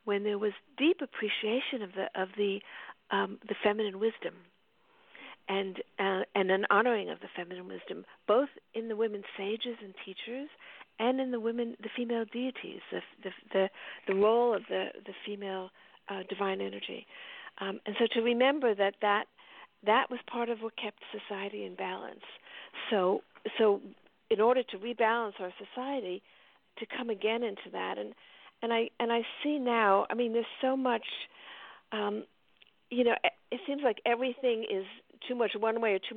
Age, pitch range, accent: 50-69, 200-240 Hz, American